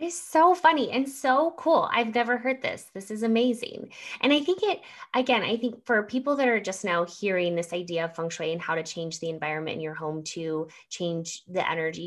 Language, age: English, 20-39